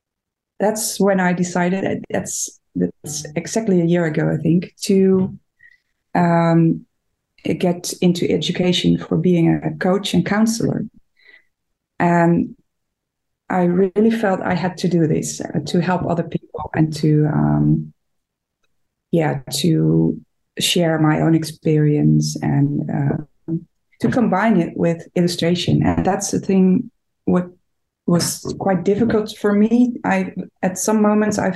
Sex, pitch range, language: female, 165-195 Hz, English